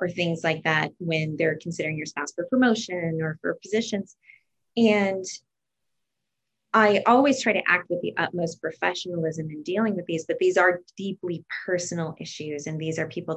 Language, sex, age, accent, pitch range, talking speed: English, female, 20-39, American, 160-200 Hz, 170 wpm